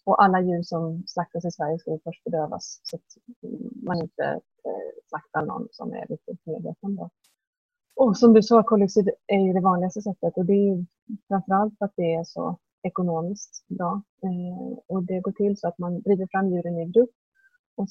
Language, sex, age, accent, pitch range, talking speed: Swedish, female, 30-49, native, 170-205 Hz, 180 wpm